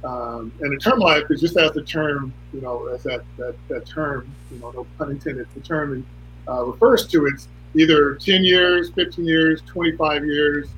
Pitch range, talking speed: 130-155 Hz, 195 wpm